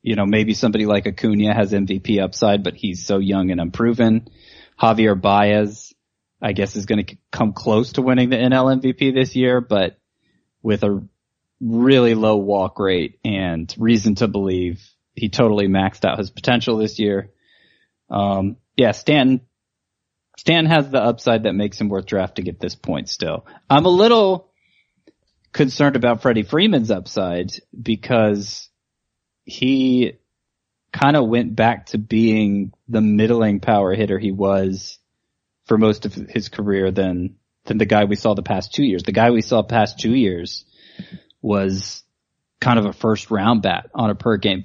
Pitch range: 100-120 Hz